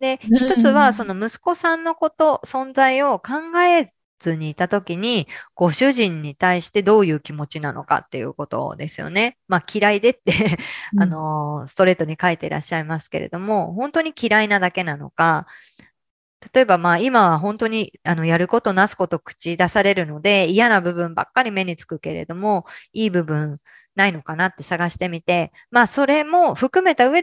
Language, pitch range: Japanese, 165-235 Hz